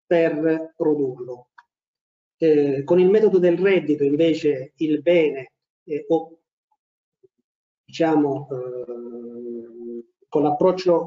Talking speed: 90 wpm